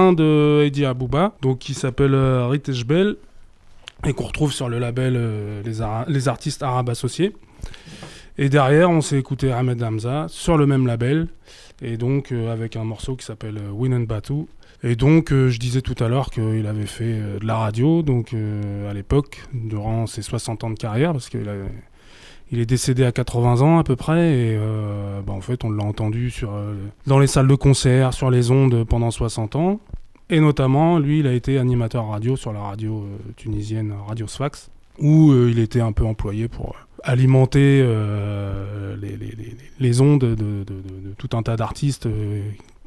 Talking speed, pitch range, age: 200 wpm, 110-140 Hz, 20-39